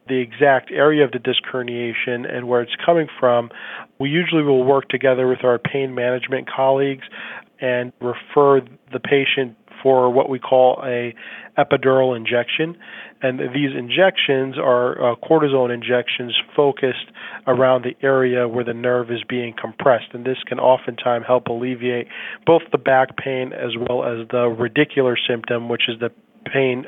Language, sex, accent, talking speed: English, male, American, 155 wpm